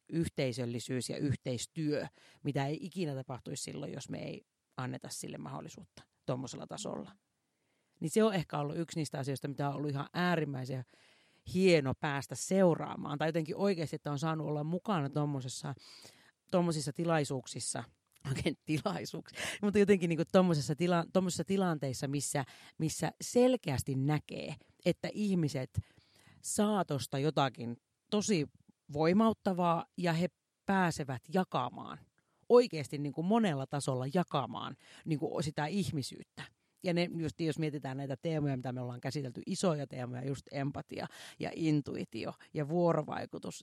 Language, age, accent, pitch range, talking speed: Finnish, 40-59, native, 140-175 Hz, 125 wpm